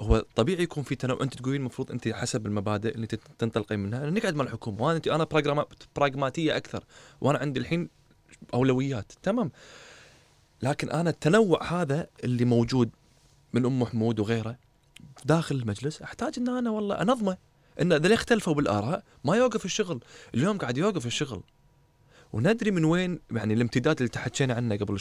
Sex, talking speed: male, 155 wpm